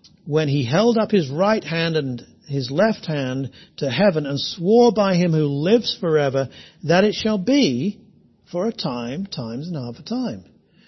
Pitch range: 155-220 Hz